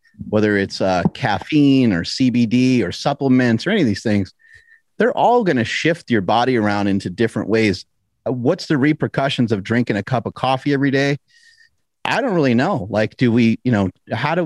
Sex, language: male, English